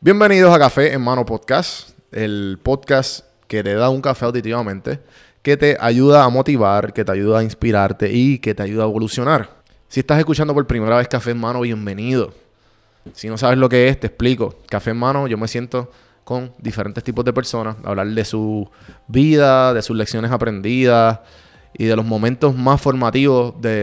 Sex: male